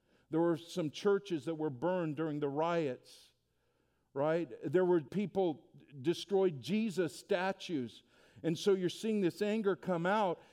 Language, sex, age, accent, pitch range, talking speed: English, male, 50-69, American, 170-220 Hz, 140 wpm